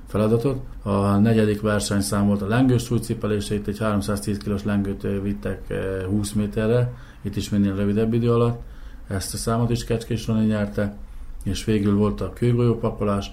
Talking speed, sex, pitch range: 155 wpm, male, 100-110 Hz